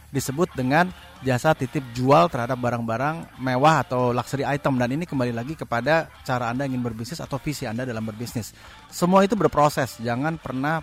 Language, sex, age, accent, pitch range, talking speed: Indonesian, male, 30-49, native, 115-145 Hz, 165 wpm